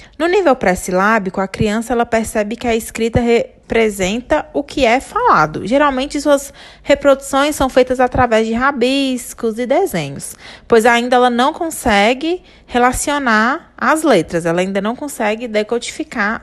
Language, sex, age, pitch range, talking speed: Portuguese, female, 20-39, 225-285 Hz, 135 wpm